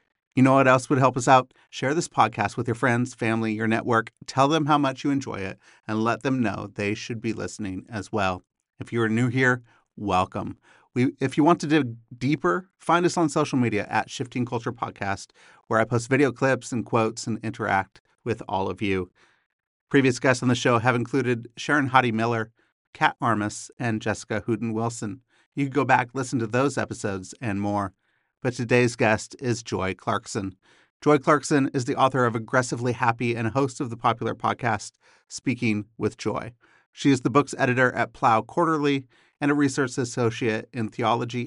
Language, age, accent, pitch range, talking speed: English, 40-59, American, 110-135 Hz, 190 wpm